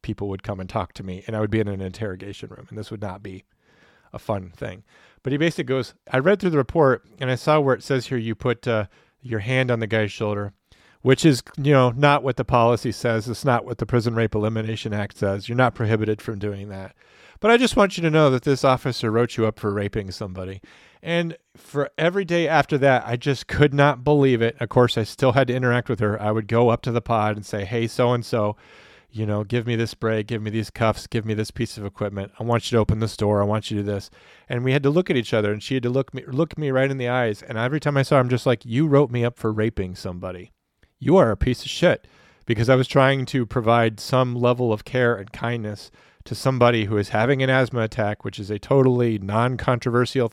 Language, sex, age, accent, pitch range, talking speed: English, male, 40-59, American, 105-130 Hz, 260 wpm